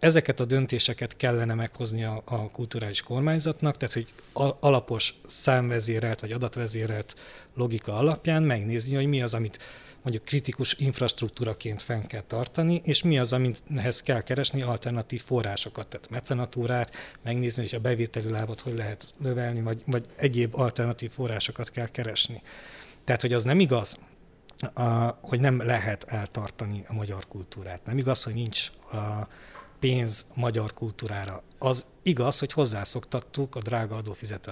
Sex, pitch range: male, 115-135 Hz